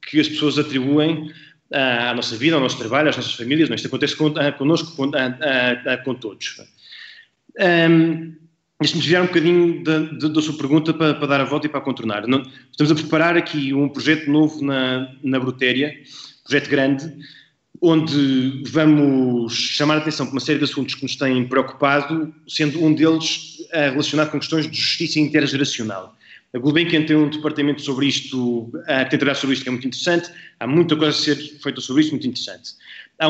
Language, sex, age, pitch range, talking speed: Portuguese, male, 20-39, 135-160 Hz, 170 wpm